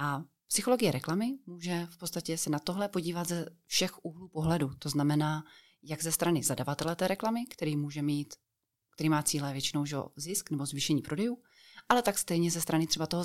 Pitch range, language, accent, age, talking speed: 145-185 Hz, Czech, native, 30-49, 185 wpm